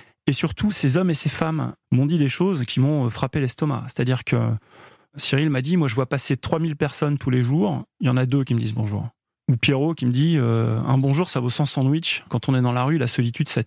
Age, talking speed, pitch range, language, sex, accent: 30-49, 270 wpm, 125-160 Hz, French, male, French